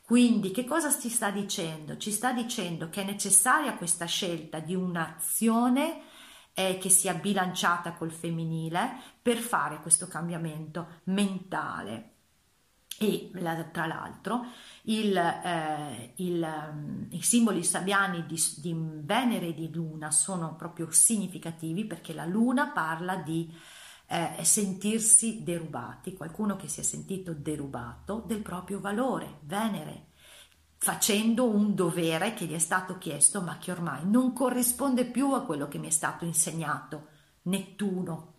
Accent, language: native, Italian